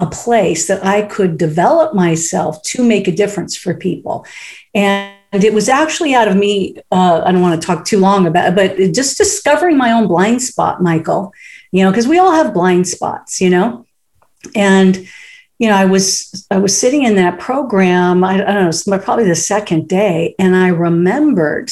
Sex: female